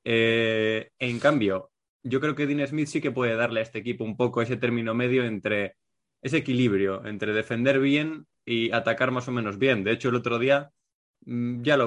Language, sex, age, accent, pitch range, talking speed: Spanish, male, 20-39, Spanish, 110-135 Hz, 195 wpm